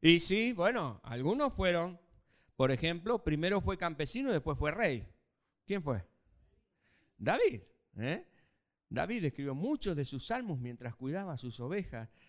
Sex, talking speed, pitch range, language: male, 135 wpm, 120-180 Hz, Spanish